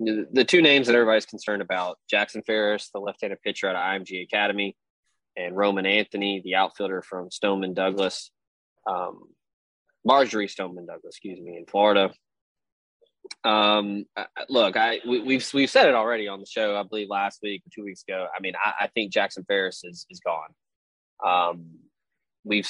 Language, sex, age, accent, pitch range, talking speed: English, male, 20-39, American, 95-110 Hz, 170 wpm